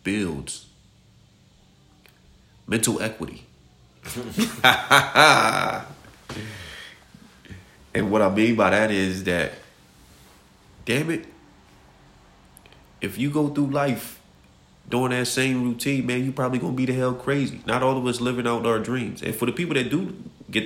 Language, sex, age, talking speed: English, male, 30-49, 135 wpm